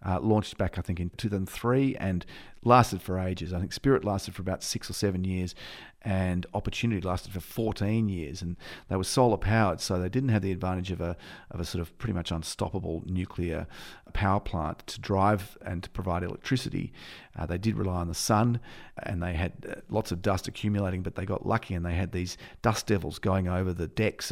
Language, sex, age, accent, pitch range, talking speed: English, male, 40-59, Australian, 85-105 Hz, 210 wpm